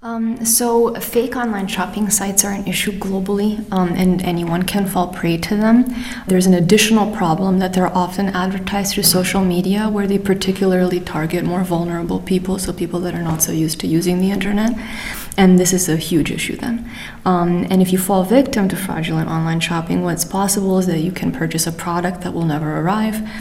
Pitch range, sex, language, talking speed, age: 175-200 Hz, female, English, 195 wpm, 20-39